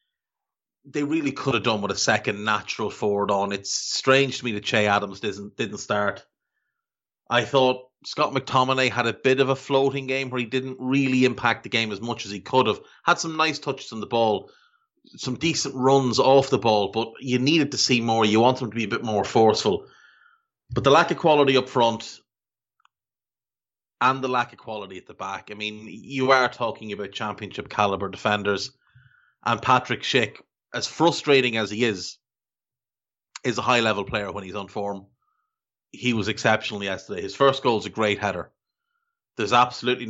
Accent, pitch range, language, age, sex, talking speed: Irish, 105-140 Hz, English, 30-49, male, 185 wpm